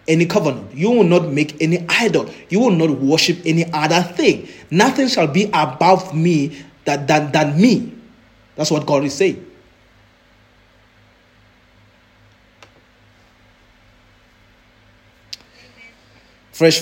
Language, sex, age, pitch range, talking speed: English, male, 30-49, 115-165 Hz, 105 wpm